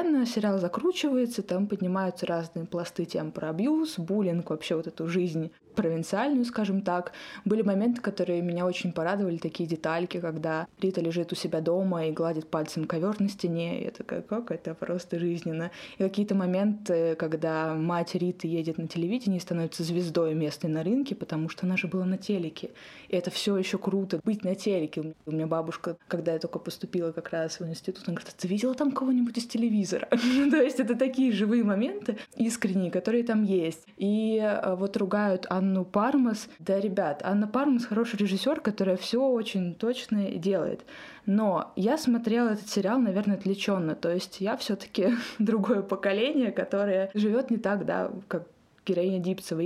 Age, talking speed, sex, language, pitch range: 20-39, 165 wpm, female, Russian, 175-220 Hz